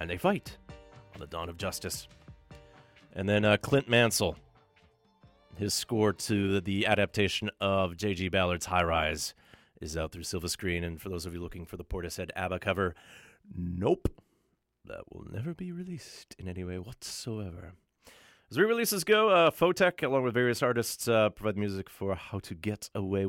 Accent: American